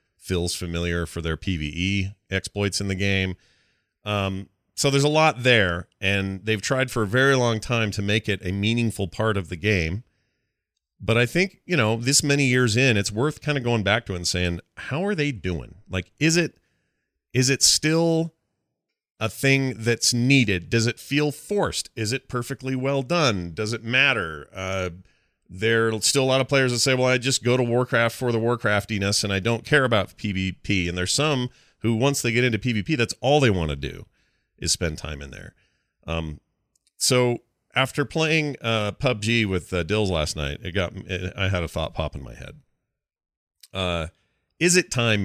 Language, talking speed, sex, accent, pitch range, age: English, 195 wpm, male, American, 95-125 Hz, 30-49